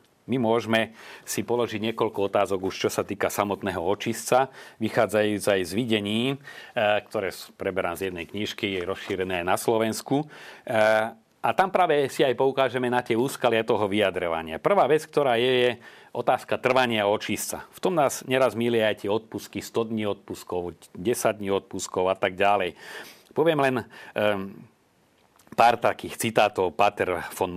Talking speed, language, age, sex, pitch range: 150 wpm, Slovak, 40-59, male, 105-125 Hz